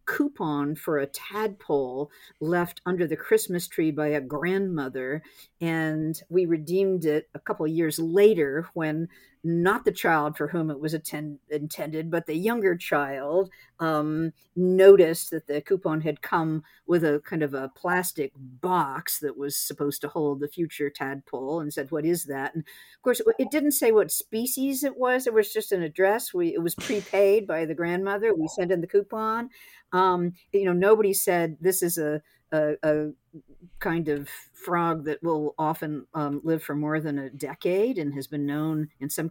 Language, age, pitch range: English, 50-69, 150-195 Hz